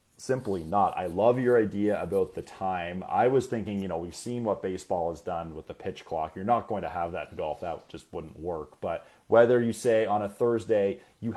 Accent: American